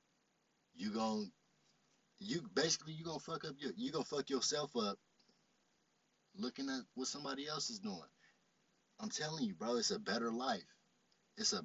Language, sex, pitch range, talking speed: English, male, 160-225 Hz, 170 wpm